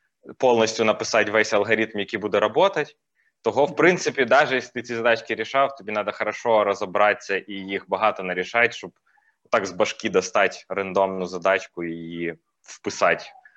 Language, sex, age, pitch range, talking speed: Ukrainian, male, 20-39, 105-130 Hz, 145 wpm